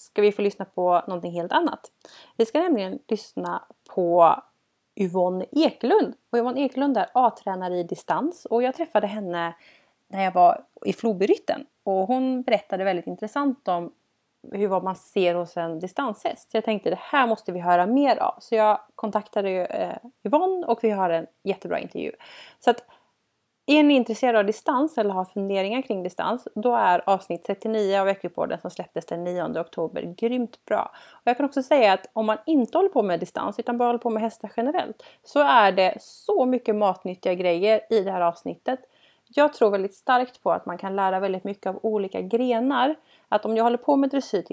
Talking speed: 190 wpm